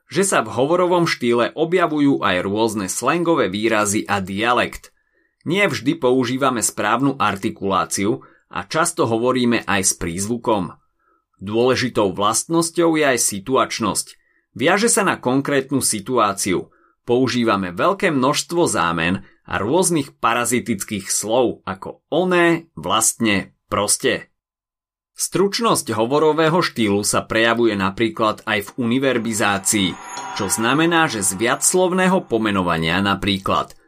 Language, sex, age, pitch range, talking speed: Slovak, male, 30-49, 105-150 Hz, 110 wpm